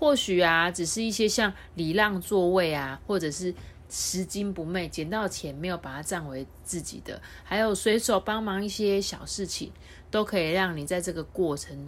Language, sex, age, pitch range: Chinese, female, 30-49, 140-195 Hz